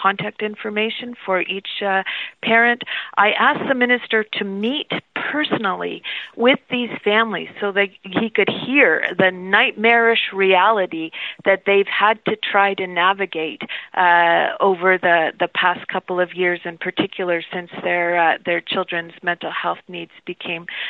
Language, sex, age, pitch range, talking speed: English, female, 40-59, 180-210 Hz, 145 wpm